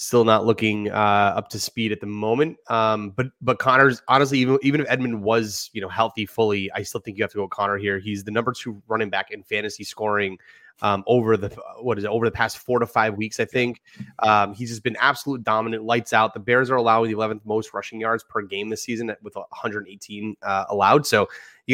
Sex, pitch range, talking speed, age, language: male, 110-125 Hz, 230 wpm, 30-49, English